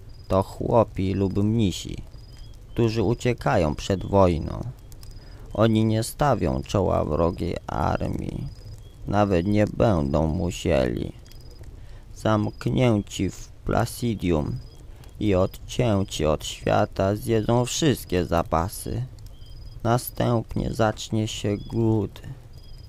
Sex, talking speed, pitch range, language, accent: male, 85 wpm, 95-115 Hz, Polish, native